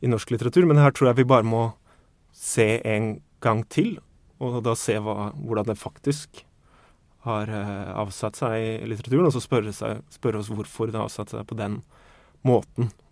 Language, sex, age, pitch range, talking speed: English, male, 30-49, 105-130 Hz, 190 wpm